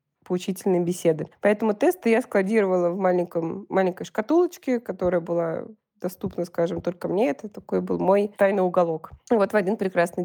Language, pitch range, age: Russian, 175-205 Hz, 20-39